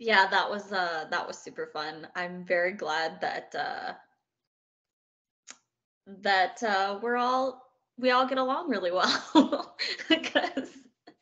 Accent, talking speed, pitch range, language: American, 130 wpm, 195-255 Hz, English